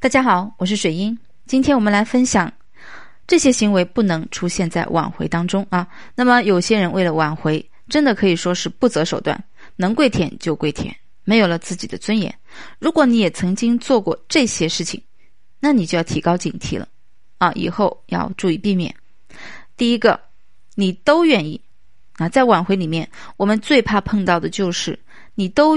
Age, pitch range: 20-39, 175-245 Hz